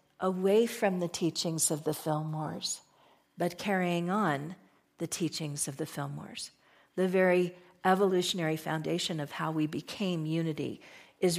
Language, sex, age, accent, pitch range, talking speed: English, female, 50-69, American, 155-205 Hz, 130 wpm